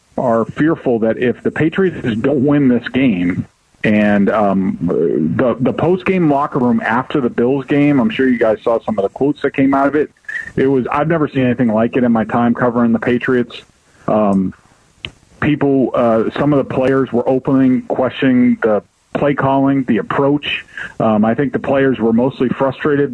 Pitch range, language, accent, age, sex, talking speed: 125-160 Hz, English, American, 40-59, male, 185 wpm